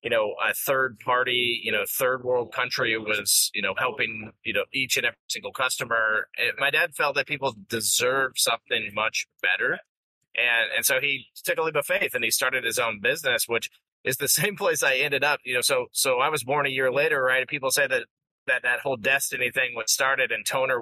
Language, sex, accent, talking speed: English, male, American, 225 wpm